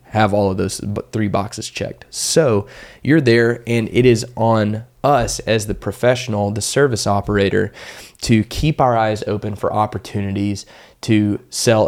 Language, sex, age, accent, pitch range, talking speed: English, male, 20-39, American, 100-120 Hz, 150 wpm